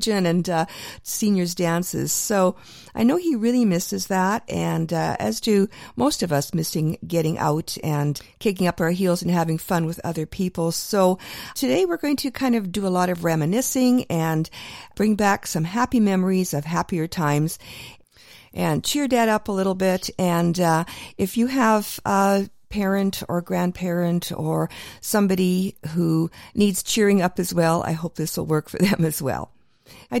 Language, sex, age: English, female, 50-69